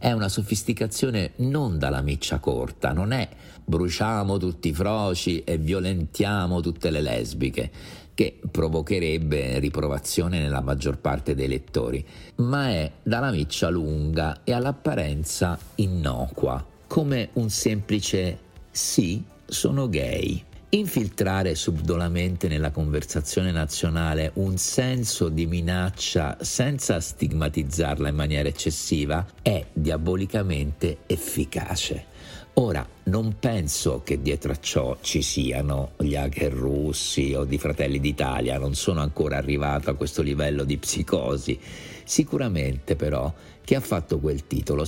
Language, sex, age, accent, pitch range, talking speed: Italian, male, 50-69, native, 75-100 Hz, 120 wpm